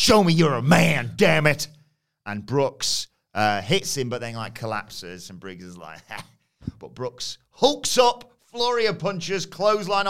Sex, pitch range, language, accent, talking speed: male, 125-185 Hz, English, British, 165 wpm